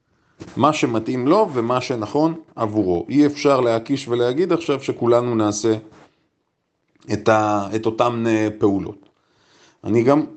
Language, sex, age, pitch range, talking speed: Hebrew, male, 30-49, 125-170 Hz, 115 wpm